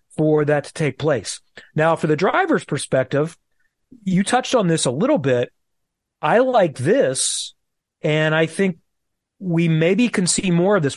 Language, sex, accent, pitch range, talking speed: English, male, American, 140-185 Hz, 165 wpm